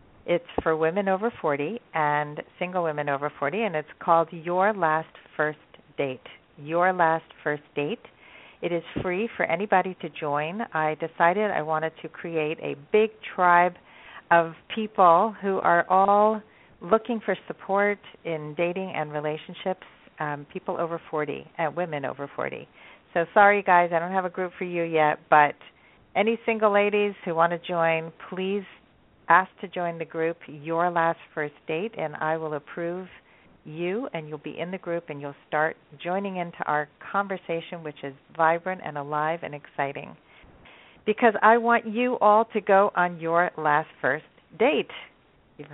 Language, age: English, 50-69